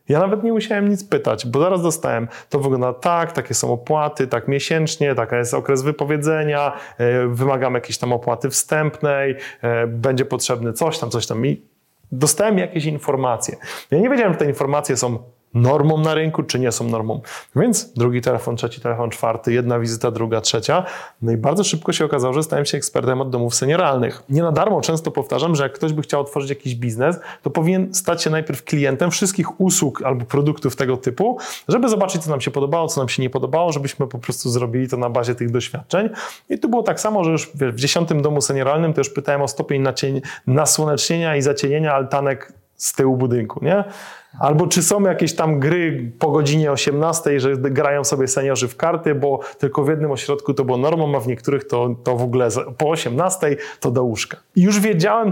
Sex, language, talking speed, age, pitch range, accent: male, Polish, 195 wpm, 30-49, 125-160 Hz, native